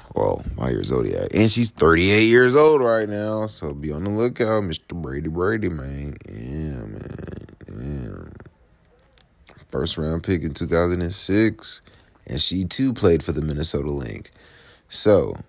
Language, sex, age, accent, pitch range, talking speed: English, male, 30-49, American, 75-100 Hz, 160 wpm